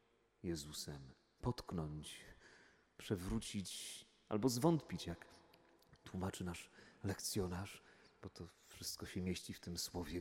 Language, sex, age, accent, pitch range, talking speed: Polish, male, 40-59, native, 95-115 Hz, 100 wpm